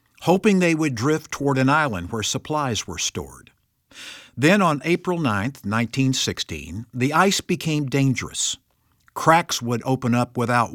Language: English